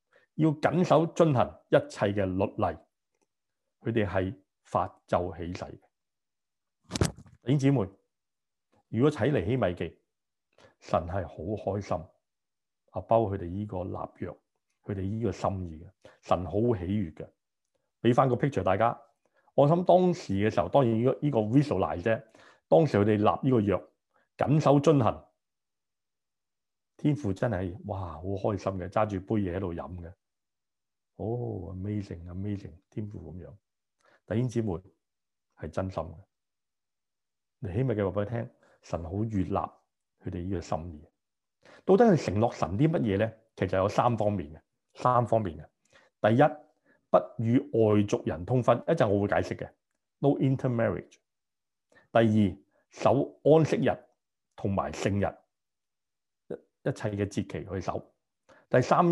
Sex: male